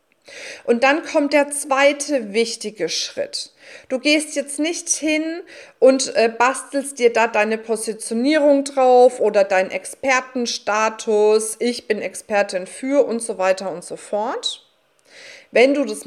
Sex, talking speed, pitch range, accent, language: female, 130 wpm, 225-290 Hz, German, German